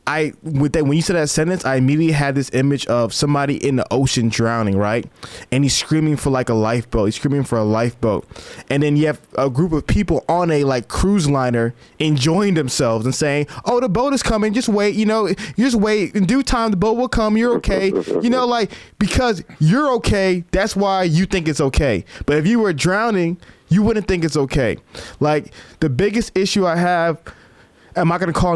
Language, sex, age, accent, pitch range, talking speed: English, male, 20-39, American, 130-175 Hz, 210 wpm